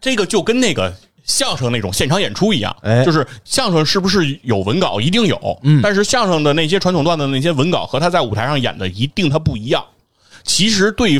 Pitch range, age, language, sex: 110-165 Hz, 30-49, Chinese, male